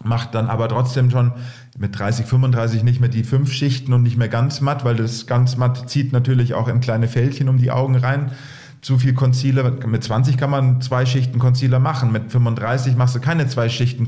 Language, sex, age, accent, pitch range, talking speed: German, male, 40-59, German, 120-135 Hz, 215 wpm